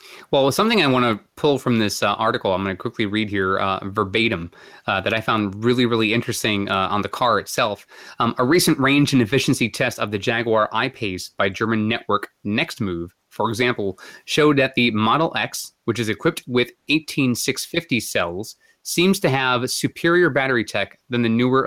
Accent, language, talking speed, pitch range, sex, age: American, English, 185 wpm, 105-130 Hz, male, 30-49